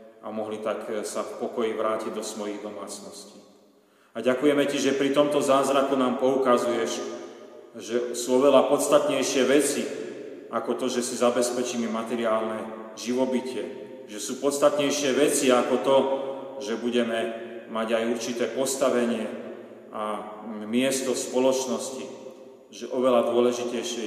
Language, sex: Slovak, male